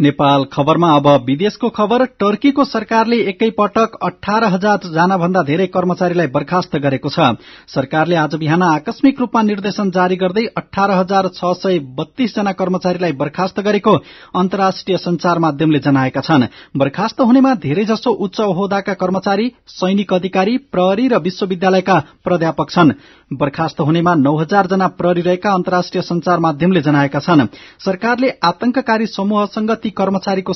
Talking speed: 90 wpm